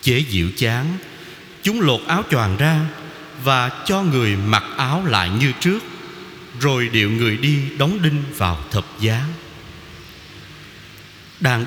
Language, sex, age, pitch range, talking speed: Vietnamese, male, 30-49, 110-165 Hz, 135 wpm